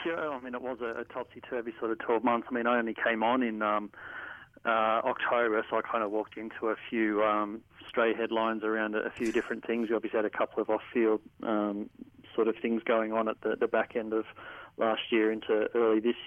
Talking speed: 225 wpm